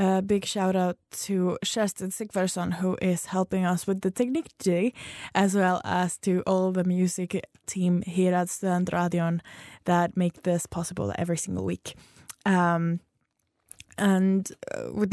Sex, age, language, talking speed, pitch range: female, 10-29, English, 145 wpm, 185-210 Hz